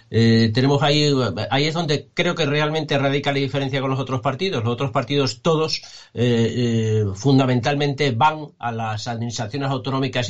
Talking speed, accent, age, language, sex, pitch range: 165 wpm, Spanish, 50-69, Spanish, male, 115-140 Hz